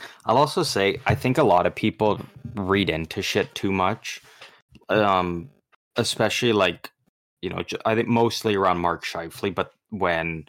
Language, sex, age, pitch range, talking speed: English, male, 20-39, 90-110 Hz, 155 wpm